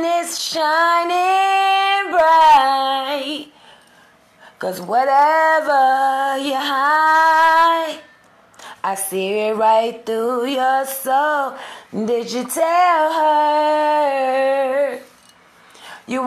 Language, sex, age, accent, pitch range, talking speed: English, female, 20-39, American, 240-315 Hz, 65 wpm